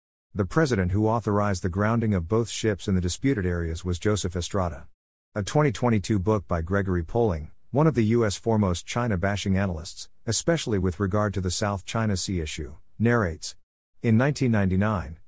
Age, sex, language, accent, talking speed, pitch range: 50-69, male, English, American, 160 wpm, 90-110 Hz